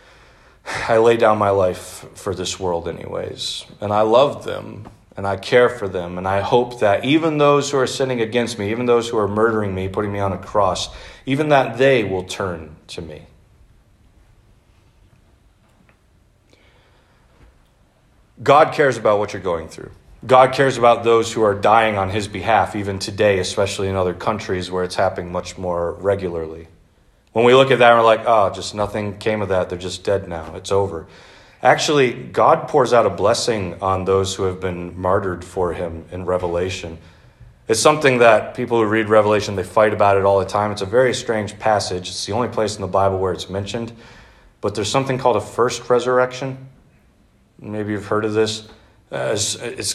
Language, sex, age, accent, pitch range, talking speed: English, male, 30-49, American, 95-115 Hz, 185 wpm